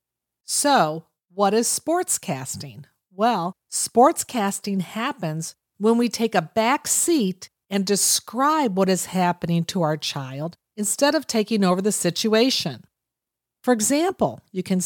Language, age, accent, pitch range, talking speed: English, 50-69, American, 185-260 Hz, 135 wpm